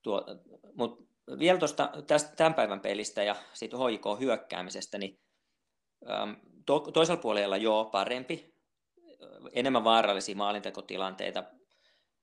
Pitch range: 100-160 Hz